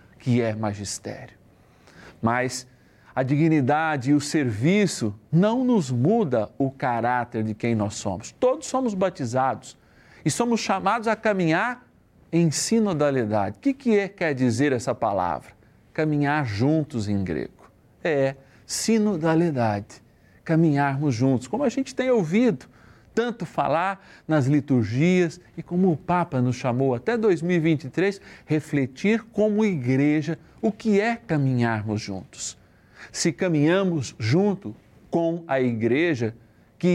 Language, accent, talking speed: Portuguese, Brazilian, 120 wpm